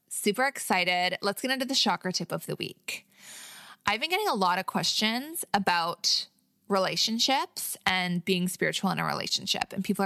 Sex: female